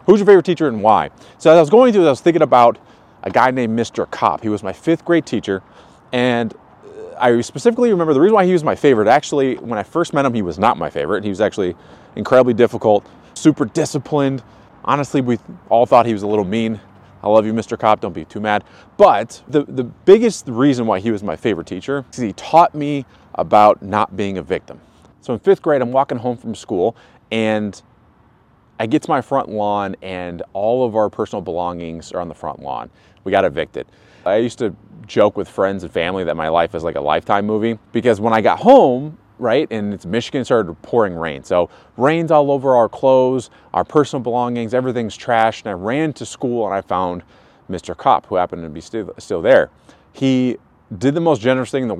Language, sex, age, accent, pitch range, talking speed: English, male, 30-49, American, 105-140 Hz, 220 wpm